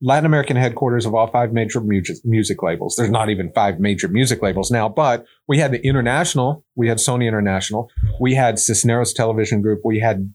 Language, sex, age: English, male, 40-59